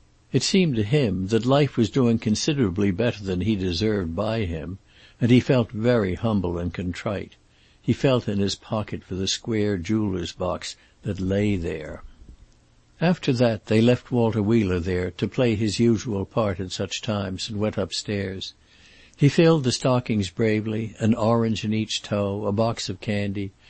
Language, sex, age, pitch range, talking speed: English, male, 60-79, 100-120 Hz, 170 wpm